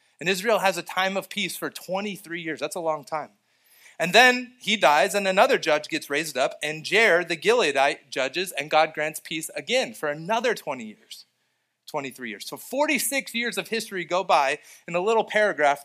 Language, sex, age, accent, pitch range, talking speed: English, male, 30-49, American, 150-195 Hz, 195 wpm